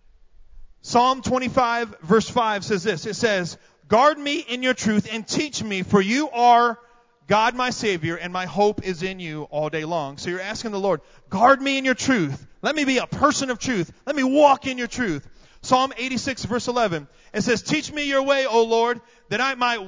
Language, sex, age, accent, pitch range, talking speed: English, male, 30-49, American, 185-250 Hz, 210 wpm